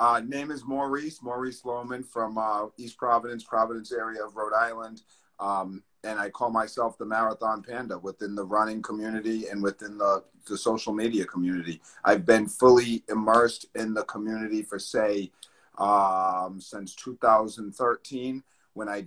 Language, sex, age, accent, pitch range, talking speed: English, male, 40-59, American, 105-125 Hz, 150 wpm